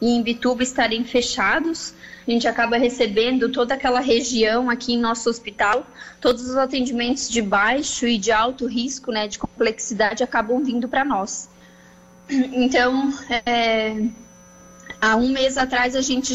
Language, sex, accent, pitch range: Portuguese, female, Brazilian, 230-265 Hz